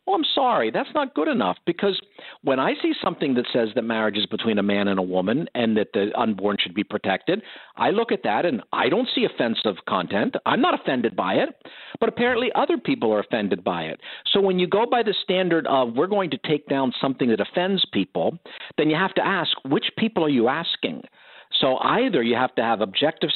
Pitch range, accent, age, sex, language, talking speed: 115-175 Hz, American, 50-69, male, English, 225 wpm